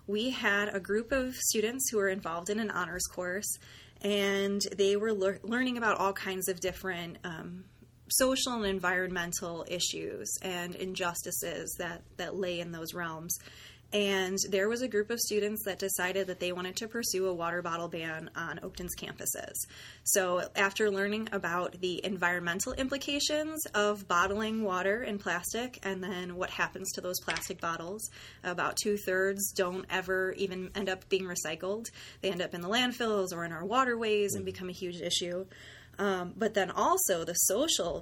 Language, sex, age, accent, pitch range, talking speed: English, female, 20-39, American, 180-210 Hz, 165 wpm